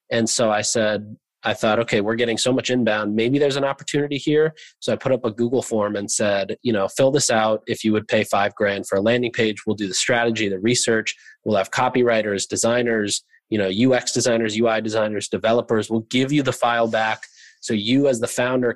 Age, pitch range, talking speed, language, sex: 20-39, 110-125 Hz, 220 wpm, English, male